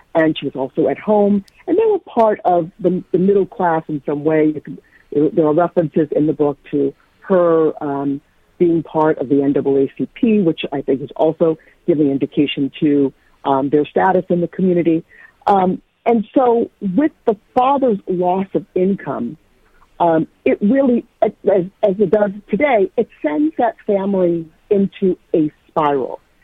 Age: 50-69